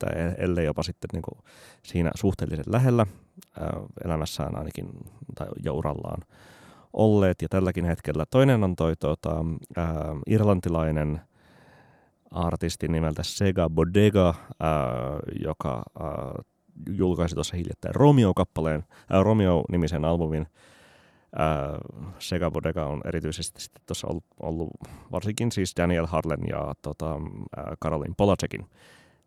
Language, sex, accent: Finnish, male, native